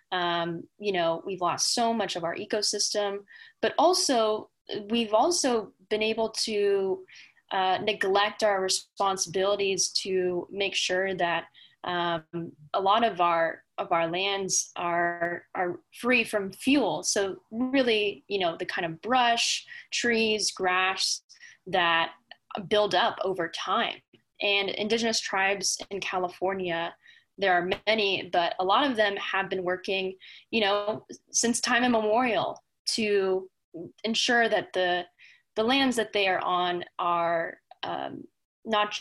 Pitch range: 180-225 Hz